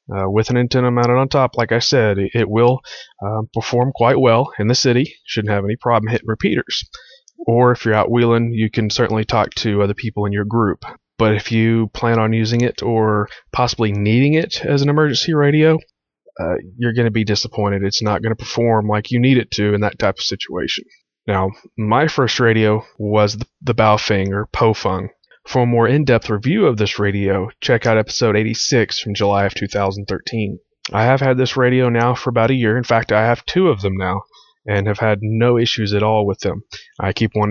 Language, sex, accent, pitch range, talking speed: English, male, American, 105-120 Hz, 210 wpm